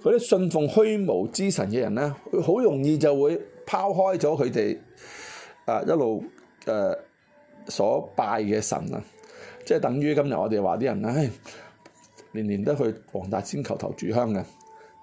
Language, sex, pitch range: Chinese, male, 145-210 Hz